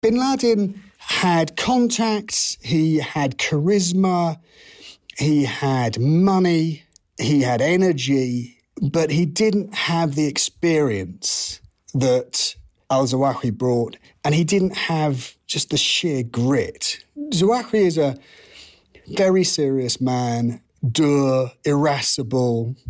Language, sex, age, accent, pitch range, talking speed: English, male, 30-49, British, 125-175 Hz, 100 wpm